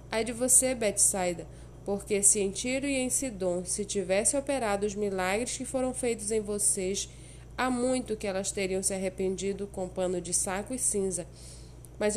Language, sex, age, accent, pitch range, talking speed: Portuguese, female, 20-39, Brazilian, 190-225 Hz, 175 wpm